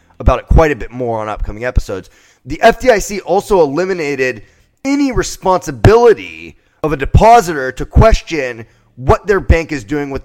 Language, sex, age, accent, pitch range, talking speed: English, male, 30-49, American, 125-185 Hz, 150 wpm